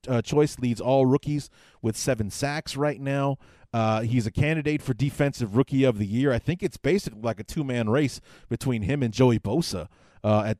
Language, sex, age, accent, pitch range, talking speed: English, male, 30-49, American, 110-135 Hz, 200 wpm